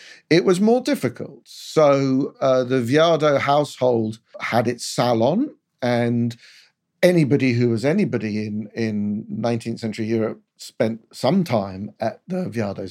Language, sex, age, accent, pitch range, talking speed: English, male, 50-69, British, 115-155 Hz, 125 wpm